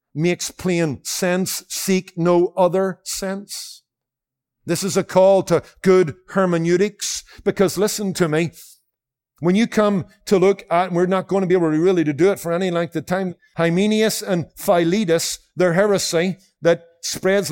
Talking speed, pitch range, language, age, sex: 160 wpm, 130-185 Hz, English, 50-69, male